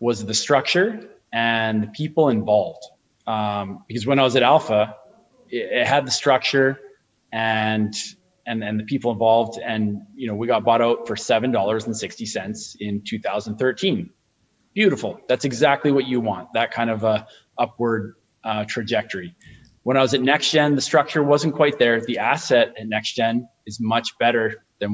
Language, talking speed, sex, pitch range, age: English, 180 wpm, male, 110-125 Hz, 20-39